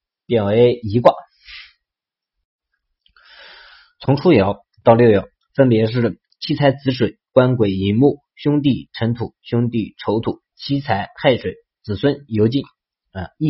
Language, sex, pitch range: Chinese, male, 110-140 Hz